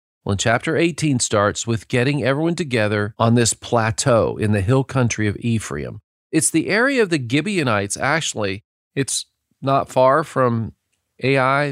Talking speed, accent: 150 wpm, American